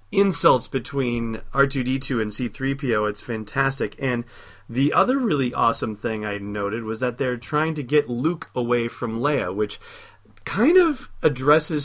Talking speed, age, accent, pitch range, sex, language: 145 wpm, 30-49, American, 105-135 Hz, male, English